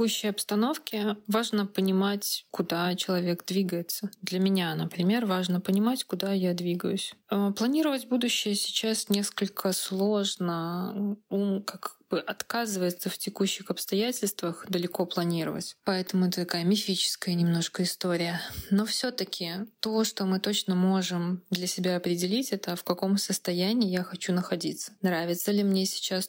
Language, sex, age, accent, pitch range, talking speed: Russian, female, 20-39, native, 180-205 Hz, 130 wpm